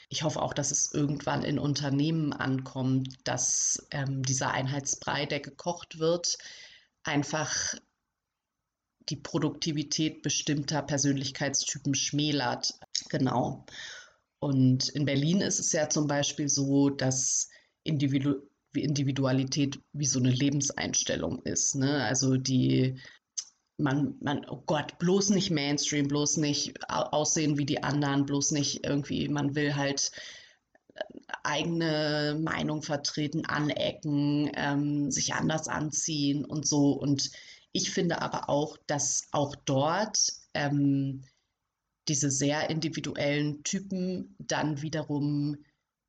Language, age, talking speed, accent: German, 30-49, 110 wpm, German